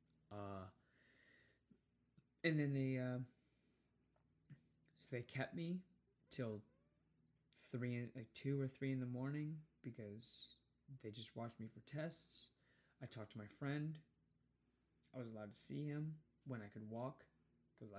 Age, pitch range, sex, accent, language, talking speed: 20-39, 105-135 Hz, male, American, English, 140 wpm